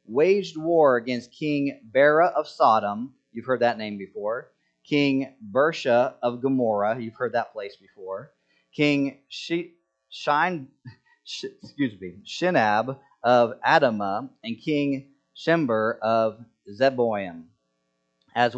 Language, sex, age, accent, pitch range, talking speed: English, male, 40-59, American, 100-145 Hz, 100 wpm